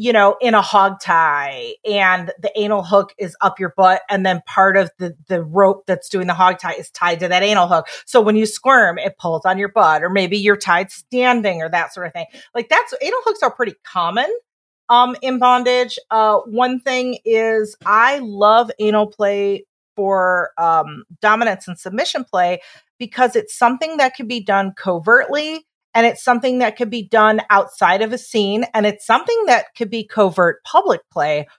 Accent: American